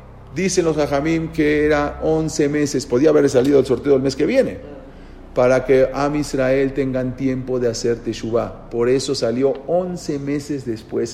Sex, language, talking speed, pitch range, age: male, Spanish, 165 wpm, 125-185 Hz, 40-59